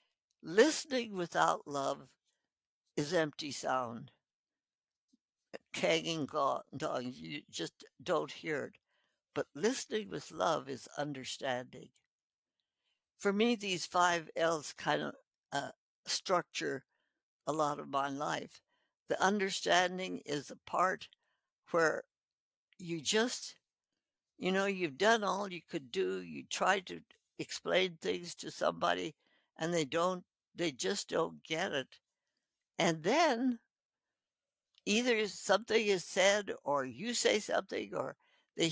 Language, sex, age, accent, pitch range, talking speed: English, female, 60-79, American, 155-225 Hz, 120 wpm